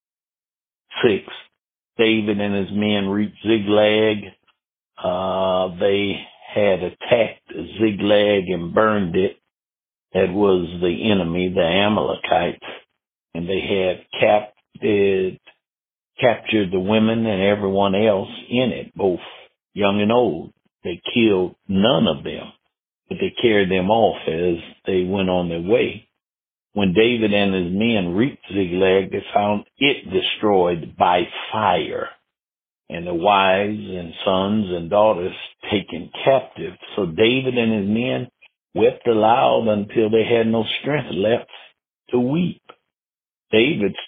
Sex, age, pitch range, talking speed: male, 60-79, 95-110 Hz, 120 wpm